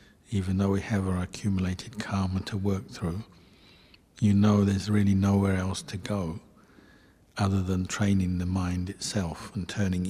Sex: male